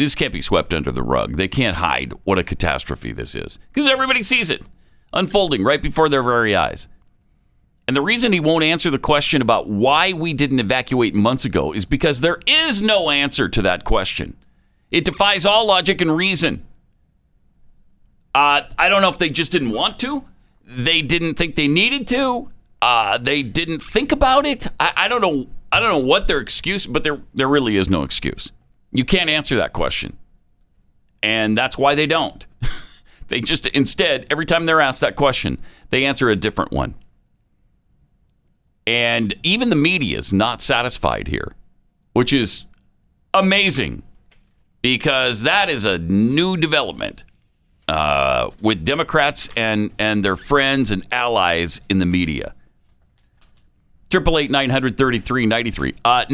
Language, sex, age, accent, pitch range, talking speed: English, male, 50-69, American, 105-175 Hz, 160 wpm